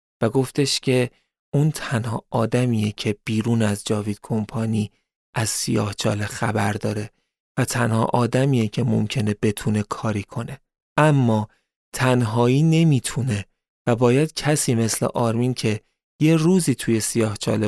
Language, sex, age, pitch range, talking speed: Persian, male, 30-49, 110-135 Hz, 120 wpm